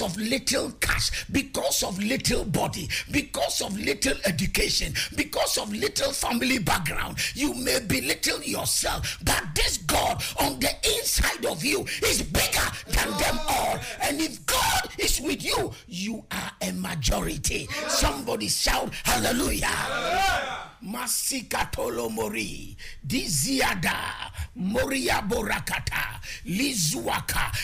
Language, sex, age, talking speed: English, male, 50-69, 110 wpm